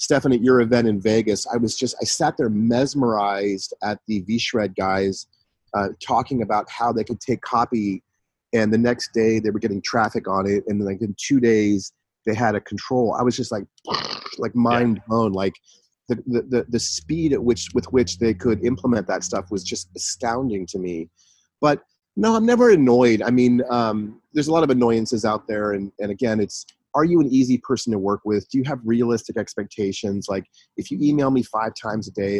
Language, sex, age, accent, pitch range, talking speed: English, male, 30-49, American, 100-120 Hz, 210 wpm